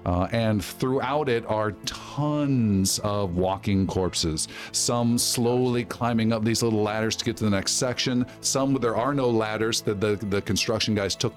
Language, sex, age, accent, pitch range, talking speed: English, male, 40-59, American, 100-120 Hz, 175 wpm